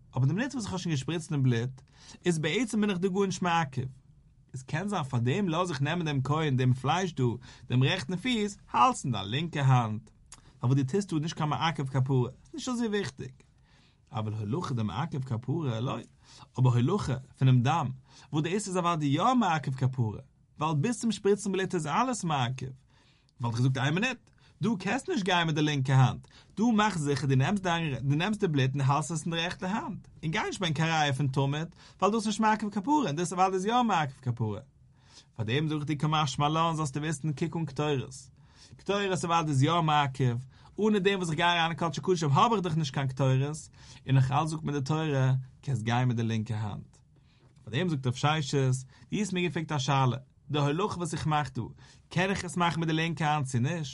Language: English